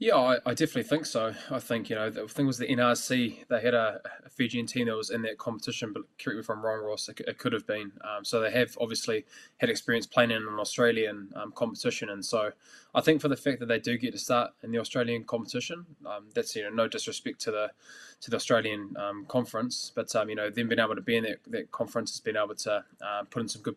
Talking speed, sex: 260 wpm, male